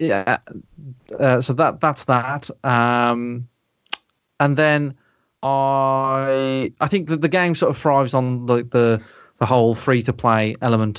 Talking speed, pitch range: 155 wpm, 105-130 Hz